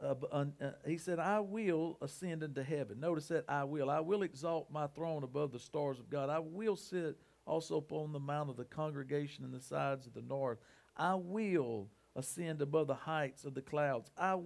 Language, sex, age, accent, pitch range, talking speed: English, male, 50-69, American, 145-190 Hz, 205 wpm